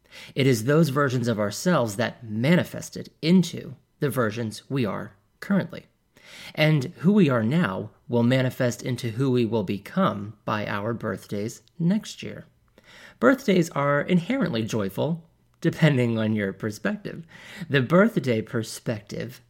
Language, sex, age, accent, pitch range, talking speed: English, male, 30-49, American, 115-165 Hz, 130 wpm